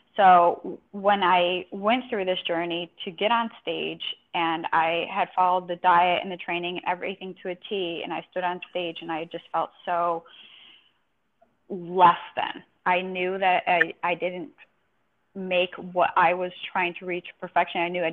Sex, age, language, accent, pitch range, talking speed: female, 10-29, English, American, 165-185 Hz, 180 wpm